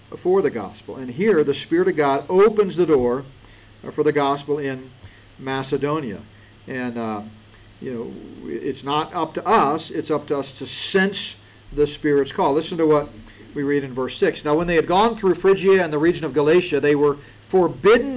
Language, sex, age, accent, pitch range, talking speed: English, male, 50-69, American, 110-160 Hz, 190 wpm